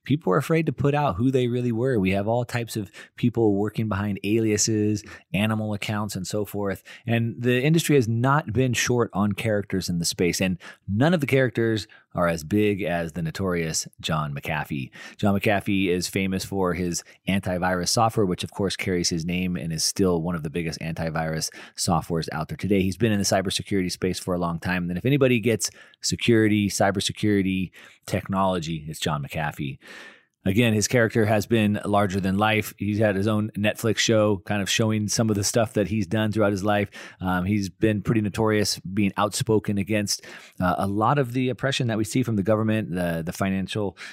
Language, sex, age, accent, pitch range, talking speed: English, male, 30-49, American, 90-110 Hz, 195 wpm